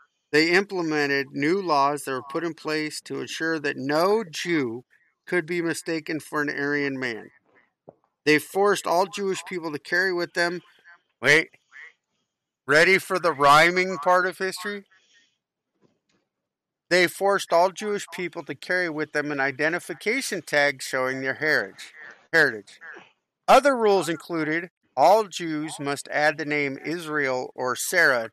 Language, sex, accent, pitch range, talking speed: English, male, American, 140-180 Hz, 140 wpm